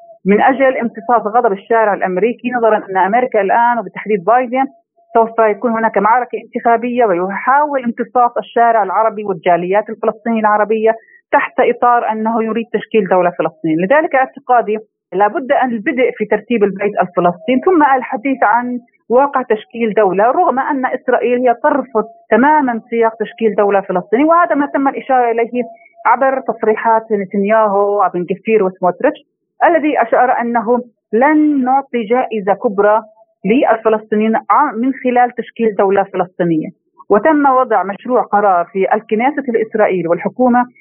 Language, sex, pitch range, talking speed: Arabic, female, 210-250 Hz, 130 wpm